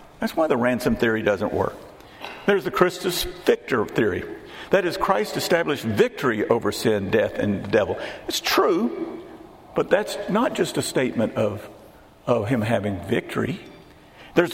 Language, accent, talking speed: English, American, 155 wpm